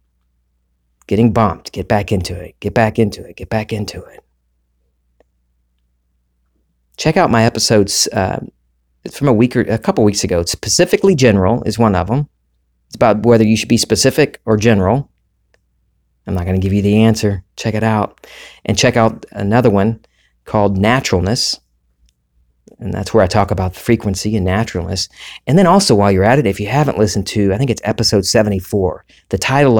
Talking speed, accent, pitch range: 180 wpm, American, 90-115 Hz